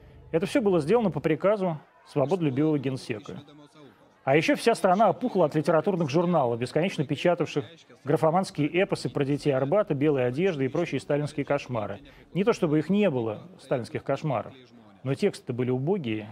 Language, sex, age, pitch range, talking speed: Russian, male, 30-49, 125-165 Hz, 150 wpm